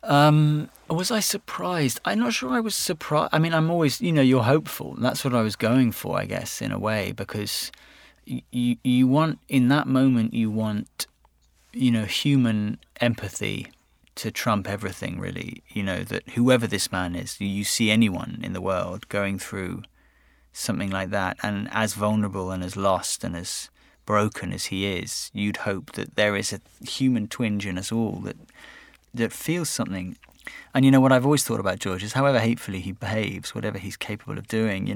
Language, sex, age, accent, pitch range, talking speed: English, male, 20-39, British, 100-130 Hz, 190 wpm